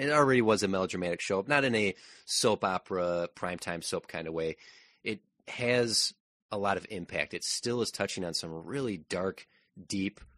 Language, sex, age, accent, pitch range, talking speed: English, male, 30-49, American, 85-115 Hz, 185 wpm